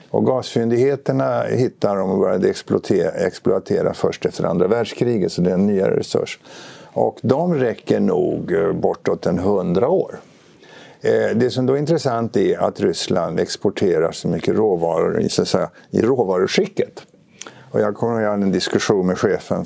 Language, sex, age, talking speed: Swedish, male, 50-69, 145 wpm